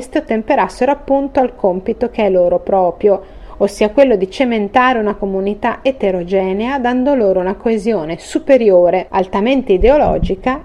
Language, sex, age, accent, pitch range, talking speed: Italian, female, 40-59, native, 180-245 Hz, 125 wpm